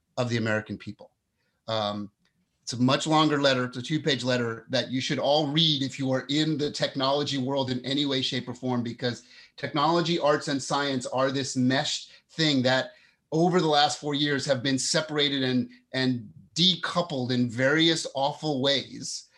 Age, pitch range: 30-49, 130-160 Hz